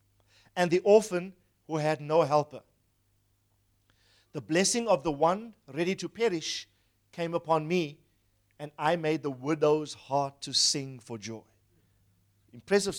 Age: 50-69